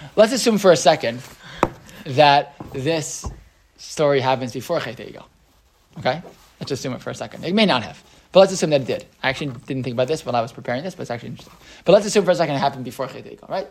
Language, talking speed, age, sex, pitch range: English, 245 wpm, 20-39, male, 145-195 Hz